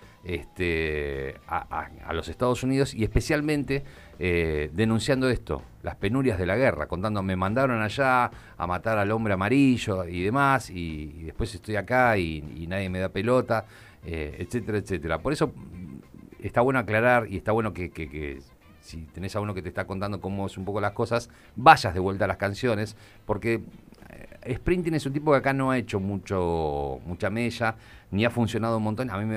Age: 40-59